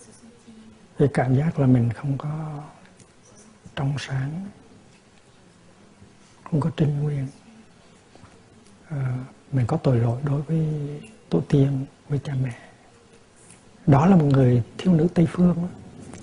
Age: 60-79